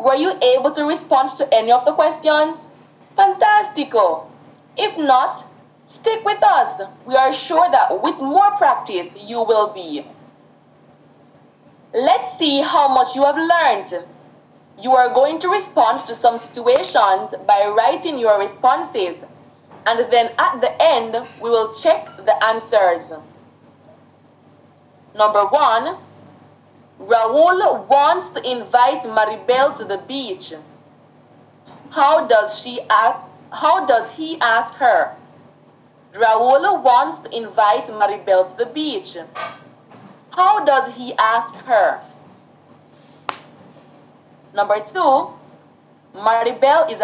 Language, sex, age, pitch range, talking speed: English, female, 20-39, 220-315 Hz, 110 wpm